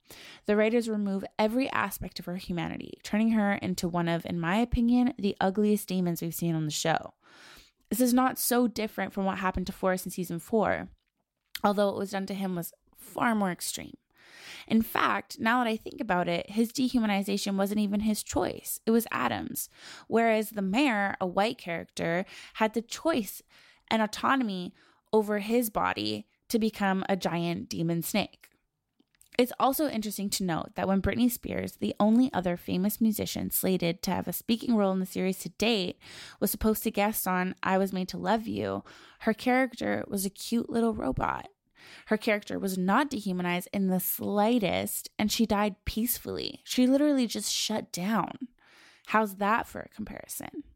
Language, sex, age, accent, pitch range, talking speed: English, female, 20-39, American, 185-230 Hz, 175 wpm